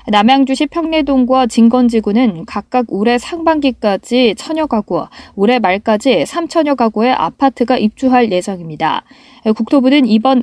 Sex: female